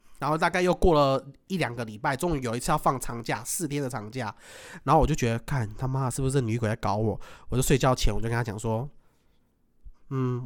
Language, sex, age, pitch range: Chinese, male, 30-49, 115-150 Hz